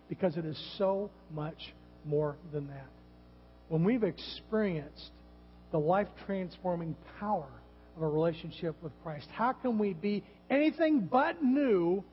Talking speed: 130 wpm